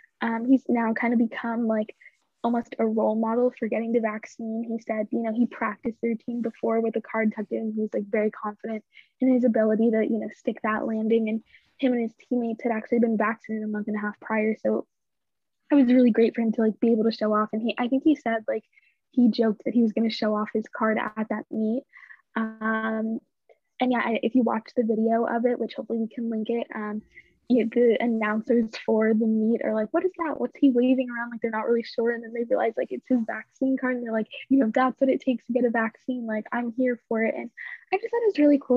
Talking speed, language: 250 wpm, English